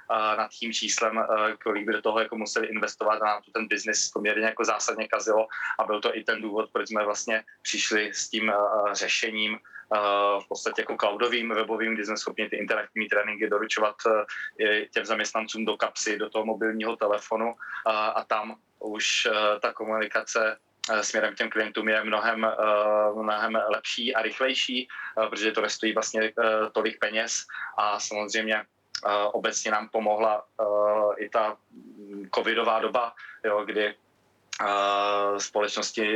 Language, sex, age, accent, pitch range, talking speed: Czech, male, 20-39, native, 105-110 Hz, 135 wpm